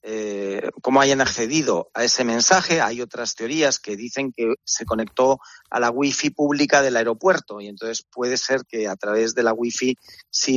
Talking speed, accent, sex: 180 wpm, Spanish, male